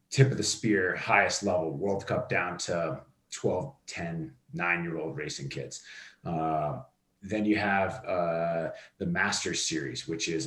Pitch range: 85-115 Hz